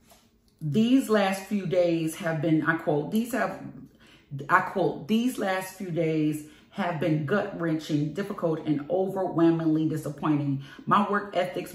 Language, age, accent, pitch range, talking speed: English, 40-59, American, 150-185 Hz, 135 wpm